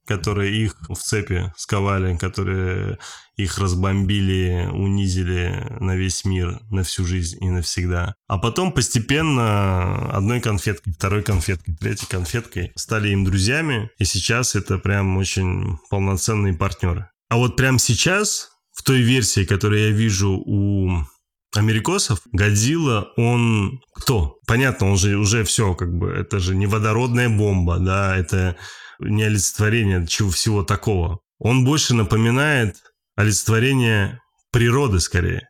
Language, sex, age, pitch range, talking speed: Russian, male, 20-39, 95-115 Hz, 130 wpm